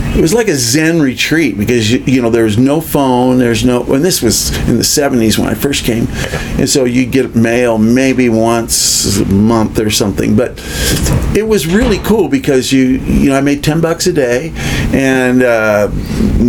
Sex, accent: male, American